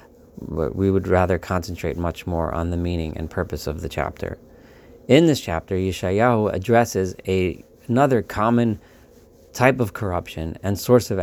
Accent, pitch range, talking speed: American, 90-120 Hz, 150 wpm